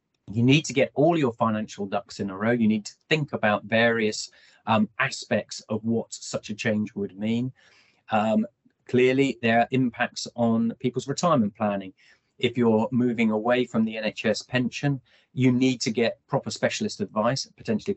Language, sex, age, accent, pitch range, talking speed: English, male, 30-49, British, 105-130 Hz, 170 wpm